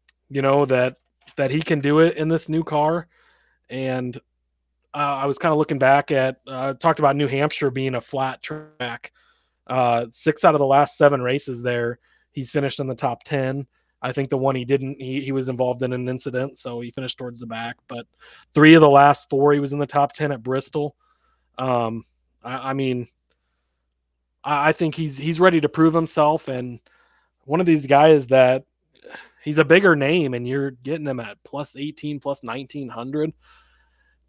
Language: English